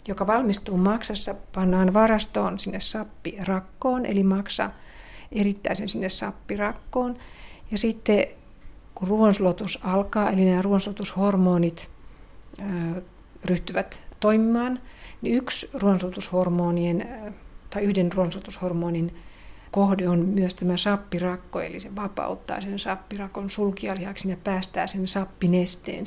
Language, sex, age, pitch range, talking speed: Finnish, female, 60-79, 185-210 Hz, 95 wpm